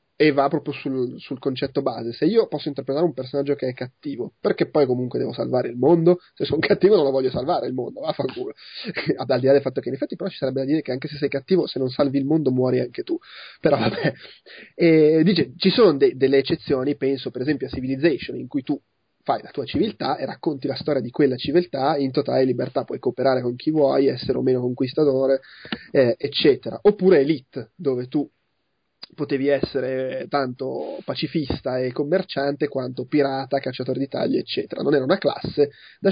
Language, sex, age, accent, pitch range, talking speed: Italian, male, 30-49, native, 130-160 Hz, 205 wpm